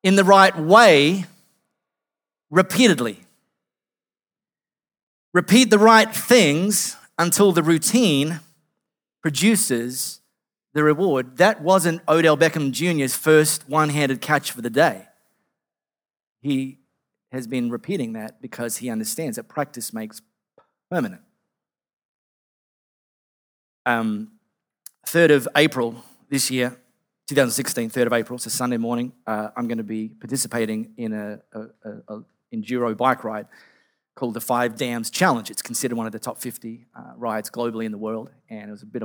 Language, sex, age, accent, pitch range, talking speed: English, male, 30-49, Australian, 120-160 Hz, 135 wpm